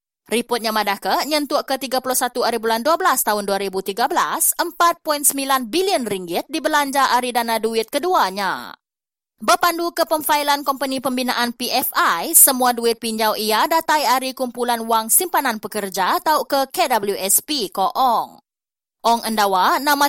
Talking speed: 130 wpm